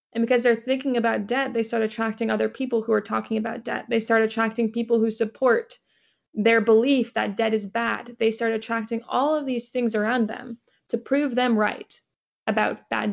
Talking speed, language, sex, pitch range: 195 wpm, English, female, 220-245 Hz